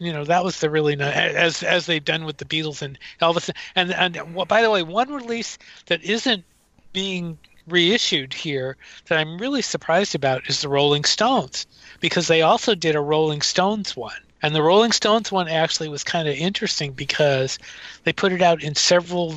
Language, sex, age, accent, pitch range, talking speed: English, male, 50-69, American, 145-175 Hz, 200 wpm